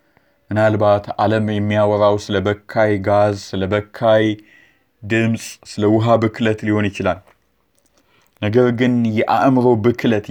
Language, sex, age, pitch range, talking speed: Amharic, male, 30-49, 100-125 Hz, 80 wpm